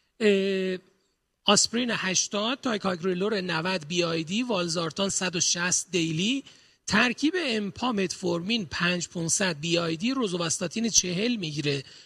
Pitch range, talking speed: 180-230 Hz, 100 wpm